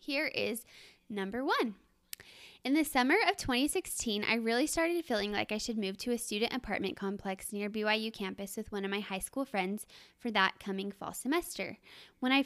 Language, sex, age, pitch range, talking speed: English, female, 10-29, 200-255 Hz, 190 wpm